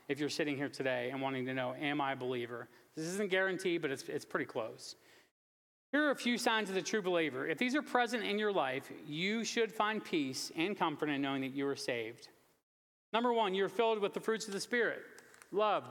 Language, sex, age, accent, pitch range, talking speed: English, male, 40-59, American, 140-220 Hz, 225 wpm